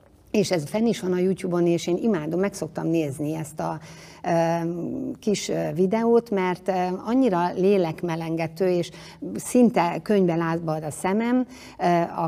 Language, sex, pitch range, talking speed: Hungarian, female, 160-205 Hz, 130 wpm